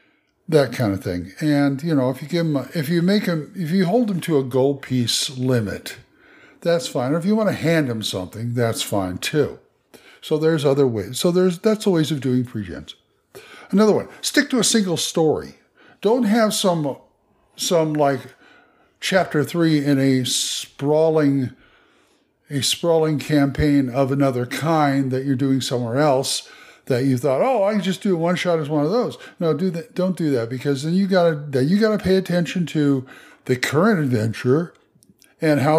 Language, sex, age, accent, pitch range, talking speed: English, male, 60-79, American, 130-175 Hz, 190 wpm